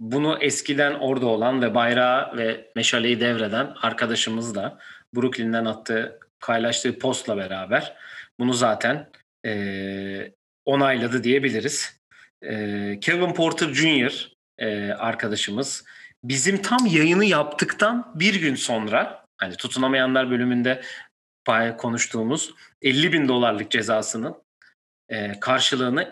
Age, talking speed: 40-59, 100 wpm